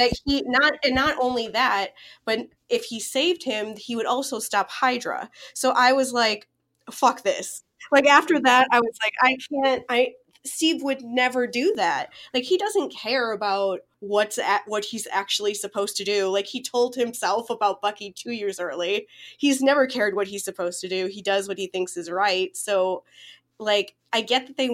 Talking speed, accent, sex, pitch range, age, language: 190 wpm, American, female, 190-245 Hz, 20-39, English